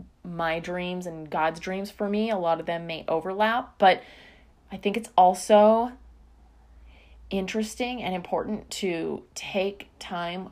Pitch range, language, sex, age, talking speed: 170-225 Hz, English, female, 20-39, 135 wpm